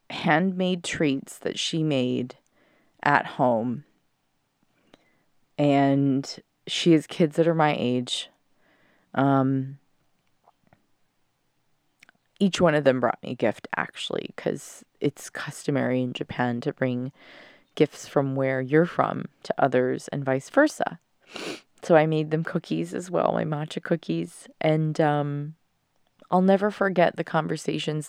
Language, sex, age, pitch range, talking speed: English, female, 20-39, 140-165 Hz, 125 wpm